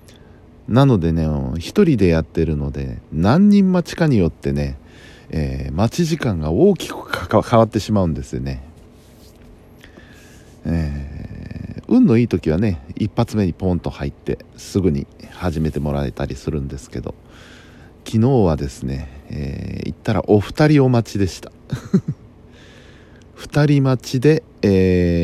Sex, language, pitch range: male, Japanese, 75-115 Hz